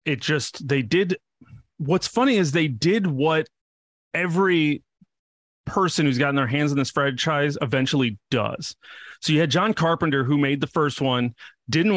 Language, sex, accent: English, male, American